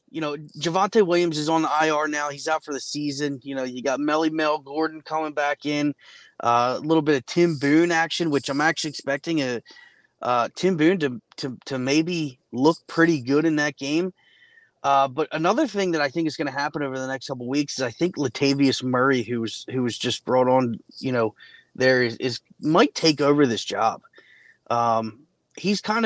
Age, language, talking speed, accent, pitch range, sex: 20-39, English, 210 wpm, American, 130-155 Hz, male